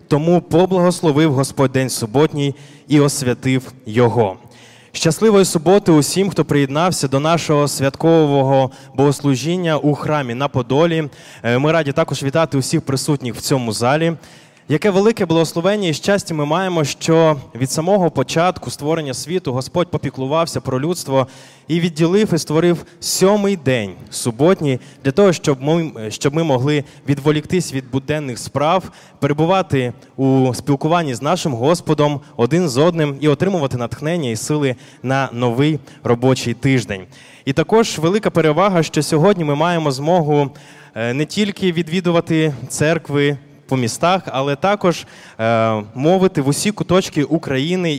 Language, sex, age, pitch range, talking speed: Ukrainian, male, 20-39, 135-165 Hz, 135 wpm